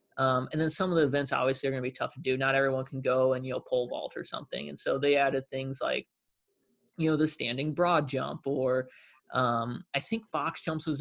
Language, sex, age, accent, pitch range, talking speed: English, male, 20-39, American, 130-150 Hz, 245 wpm